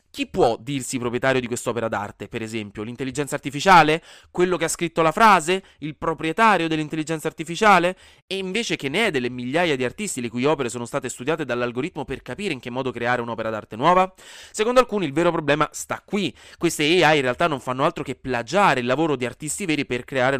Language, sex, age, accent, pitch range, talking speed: Italian, male, 20-39, native, 120-160 Hz, 205 wpm